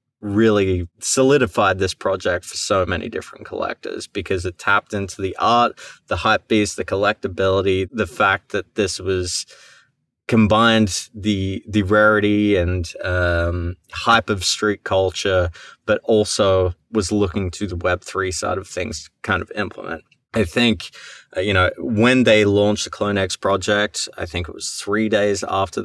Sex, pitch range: male, 90-110 Hz